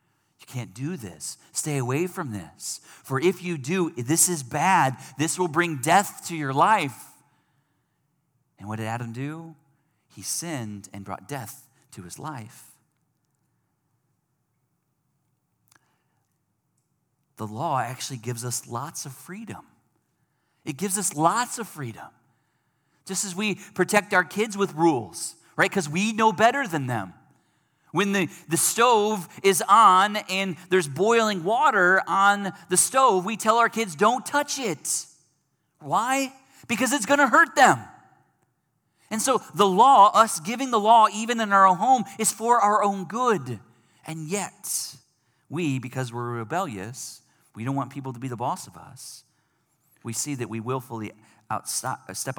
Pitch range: 130-195 Hz